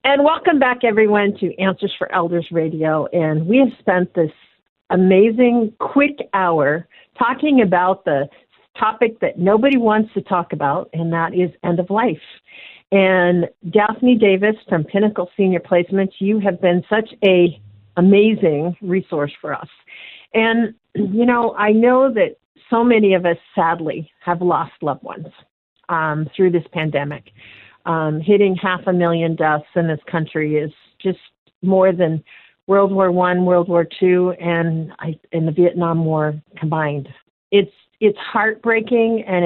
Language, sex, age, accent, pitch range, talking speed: English, female, 50-69, American, 165-210 Hz, 150 wpm